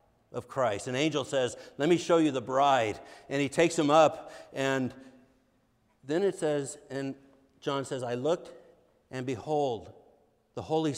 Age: 60-79